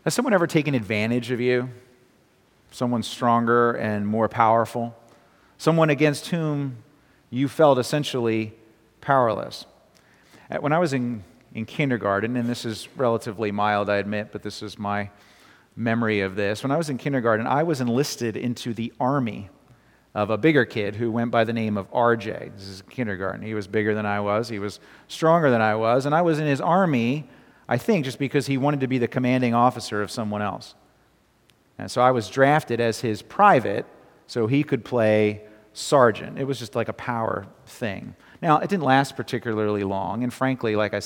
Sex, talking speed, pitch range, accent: male, 185 wpm, 105-135 Hz, American